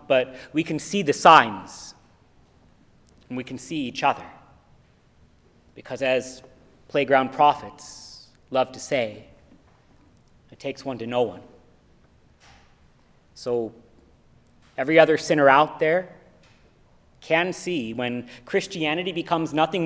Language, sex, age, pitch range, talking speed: English, male, 30-49, 120-165 Hz, 110 wpm